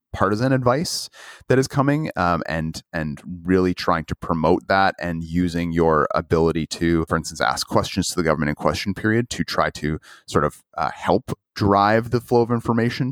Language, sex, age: English, male, 30-49